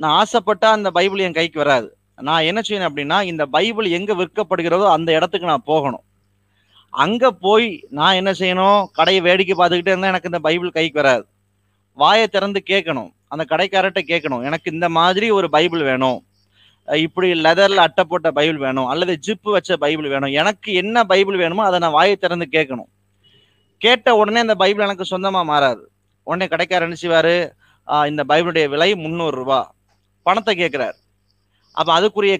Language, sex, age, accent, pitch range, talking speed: Tamil, male, 20-39, native, 150-200 Hz, 155 wpm